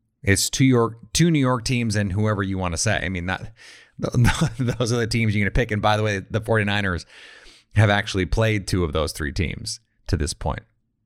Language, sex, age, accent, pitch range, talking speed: English, male, 30-49, American, 100-120 Hz, 210 wpm